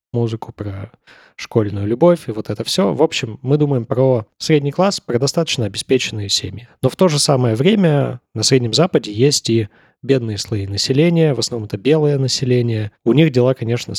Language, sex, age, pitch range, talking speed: Russian, male, 20-39, 110-145 Hz, 180 wpm